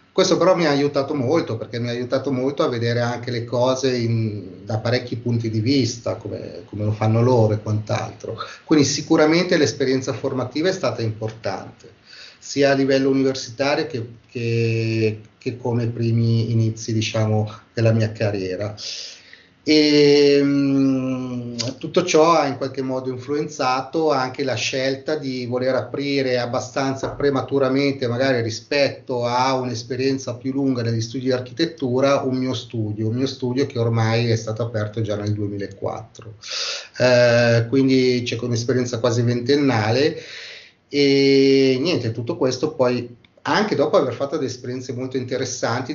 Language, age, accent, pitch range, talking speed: Italian, 30-49, native, 115-135 Hz, 145 wpm